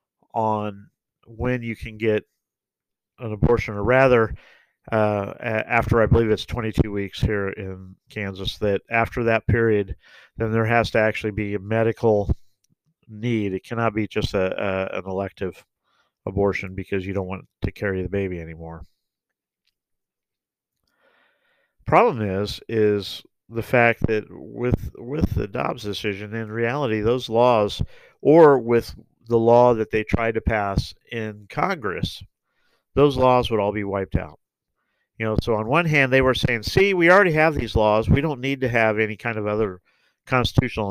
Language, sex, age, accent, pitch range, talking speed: English, male, 50-69, American, 100-115 Hz, 160 wpm